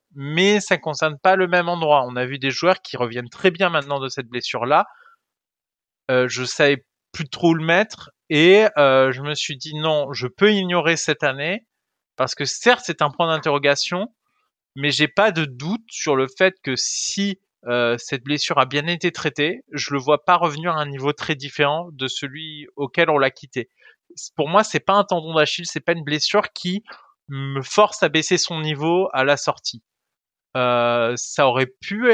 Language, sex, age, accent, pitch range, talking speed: French, male, 20-39, French, 140-180 Hz, 190 wpm